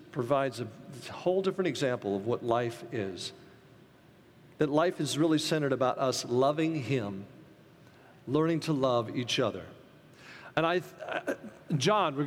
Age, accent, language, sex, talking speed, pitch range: 50-69, American, English, male, 135 wpm, 140-180 Hz